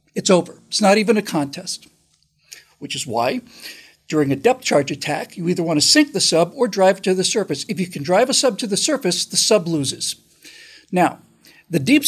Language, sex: English, male